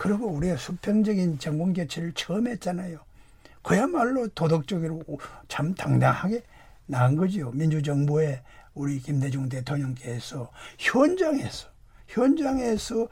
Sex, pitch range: male, 150-210 Hz